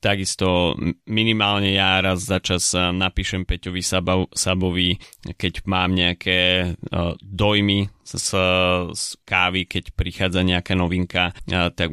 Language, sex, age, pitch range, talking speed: Slovak, male, 20-39, 90-100 Hz, 100 wpm